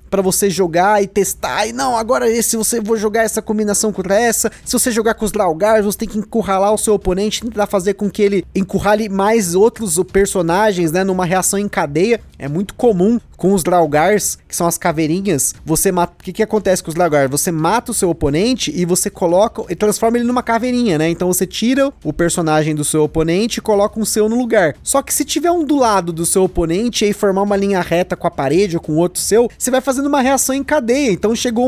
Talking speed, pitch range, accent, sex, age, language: 230 wpm, 180-230 Hz, Brazilian, male, 20-39, Portuguese